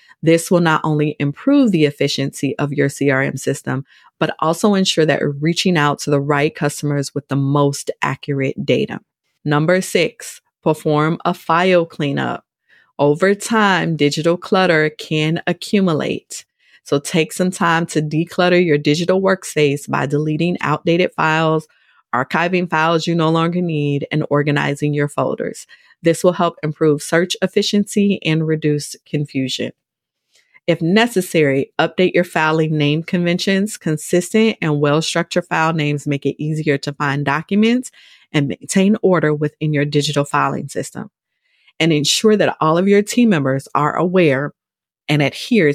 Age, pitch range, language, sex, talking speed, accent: 30-49, 145-175 Hz, English, female, 145 wpm, American